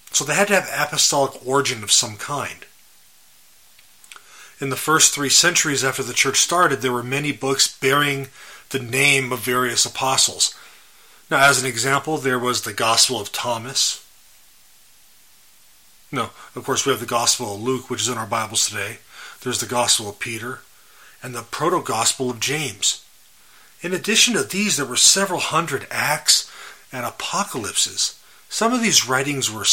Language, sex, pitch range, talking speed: English, male, 125-145 Hz, 160 wpm